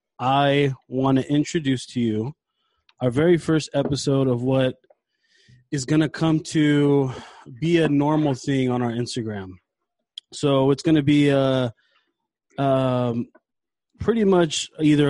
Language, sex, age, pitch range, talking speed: English, male, 20-39, 130-155 Hz, 135 wpm